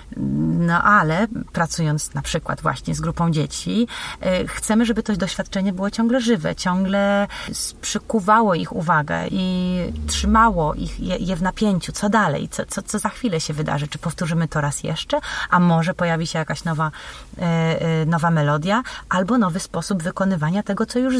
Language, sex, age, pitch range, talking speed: Polish, female, 30-49, 170-210 Hz, 165 wpm